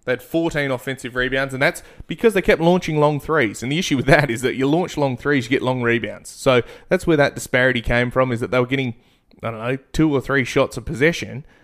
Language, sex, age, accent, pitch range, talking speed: English, male, 20-39, Australian, 115-140 Hz, 255 wpm